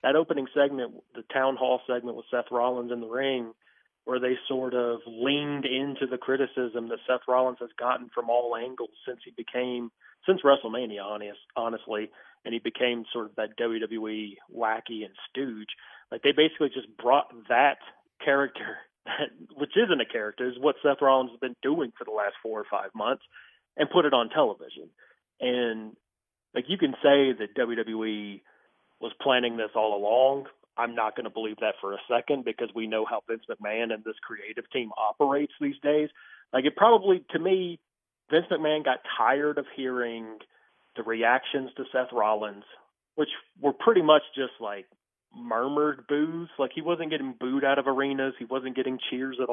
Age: 40-59